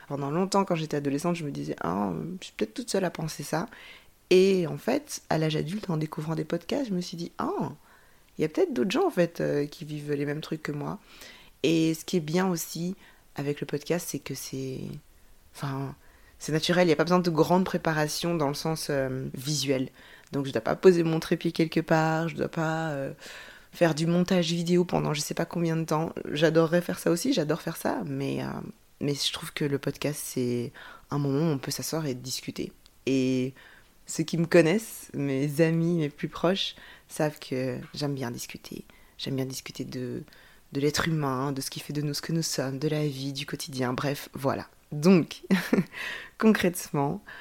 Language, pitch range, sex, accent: French, 140-170 Hz, female, French